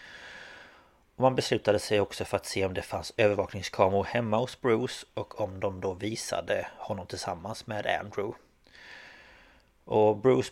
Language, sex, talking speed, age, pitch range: Swedish, male, 150 wpm, 30-49, 100-125 Hz